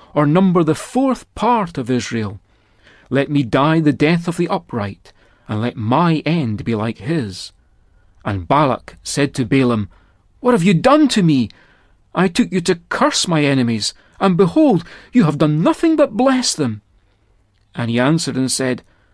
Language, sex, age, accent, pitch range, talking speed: English, male, 40-59, British, 110-170 Hz, 170 wpm